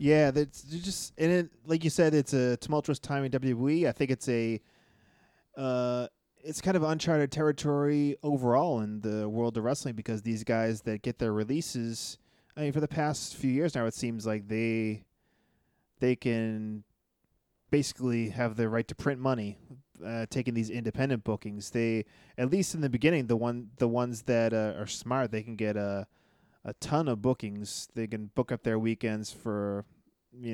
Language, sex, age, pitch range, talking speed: English, male, 20-39, 110-135 Hz, 185 wpm